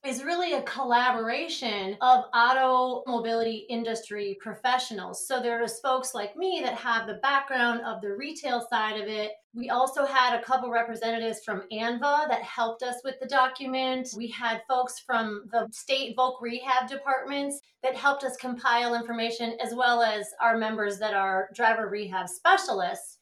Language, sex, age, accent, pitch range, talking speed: English, female, 30-49, American, 220-270 Hz, 160 wpm